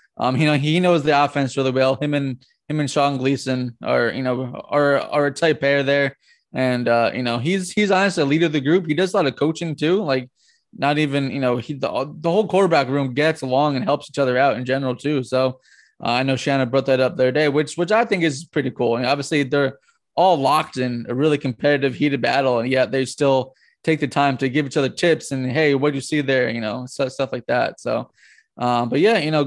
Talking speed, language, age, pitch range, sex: 255 wpm, English, 20-39, 130-160 Hz, male